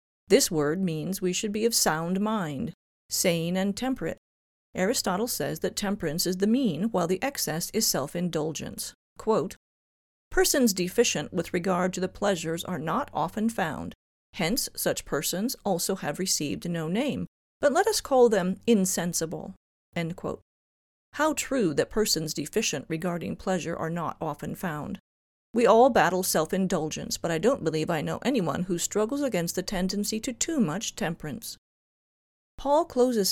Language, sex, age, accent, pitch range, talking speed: English, female, 40-59, American, 165-220 Hz, 150 wpm